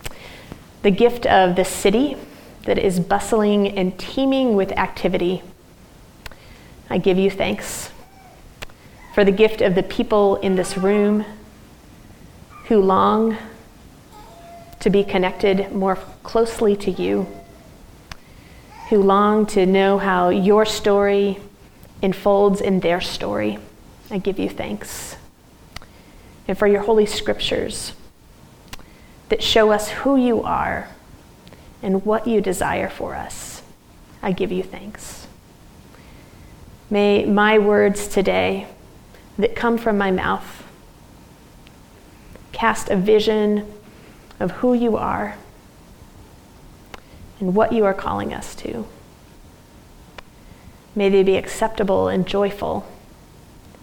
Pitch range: 190-215 Hz